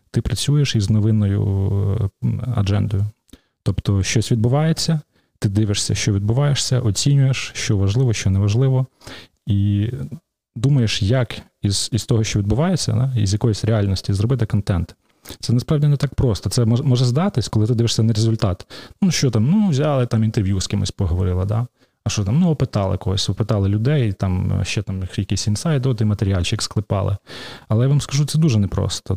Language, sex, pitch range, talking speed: Russian, male, 100-125 Hz, 165 wpm